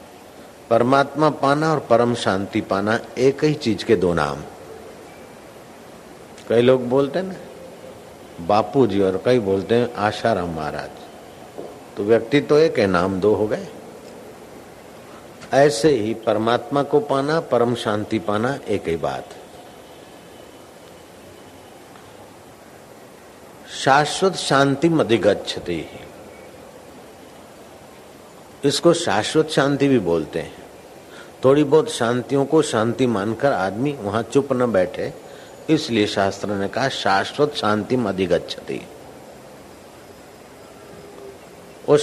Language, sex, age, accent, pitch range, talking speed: Hindi, male, 60-79, native, 105-140 Hz, 105 wpm